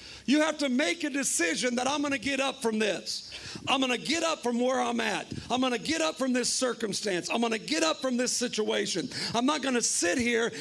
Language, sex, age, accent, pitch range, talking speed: English, male, 50-69, American, 240-295 Hz, 255 wpm